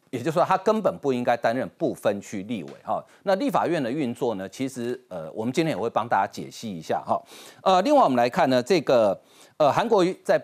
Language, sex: Chinese, male